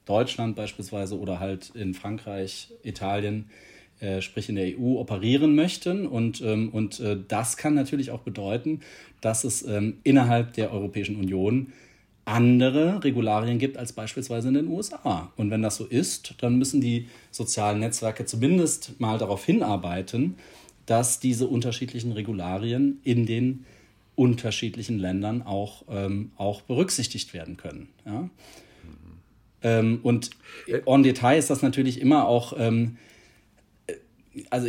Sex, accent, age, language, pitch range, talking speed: male, German, 40-59, German, 105-130 Hz, 130 wpm